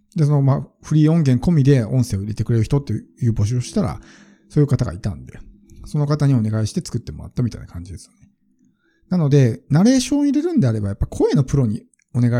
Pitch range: 110-160 Hz